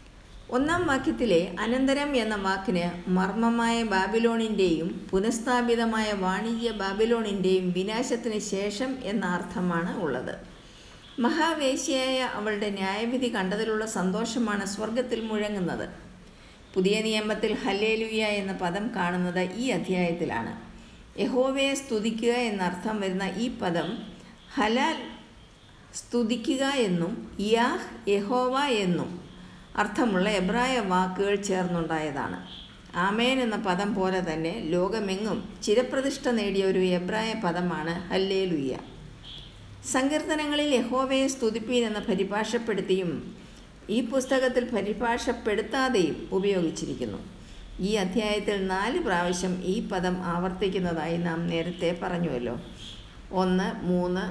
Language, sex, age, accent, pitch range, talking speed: Malayalam, female, 50-69, native, 180-235 Hz, 85 wpm